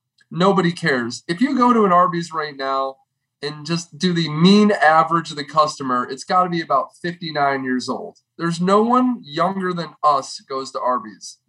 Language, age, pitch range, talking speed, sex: English, 20-39, 130-180 Hz, 195 wpm, male